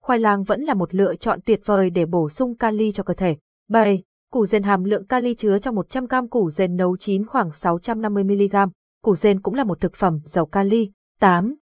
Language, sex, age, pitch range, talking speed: Vietnamese, female, 20-39, 195-240 Hz, 210 wpm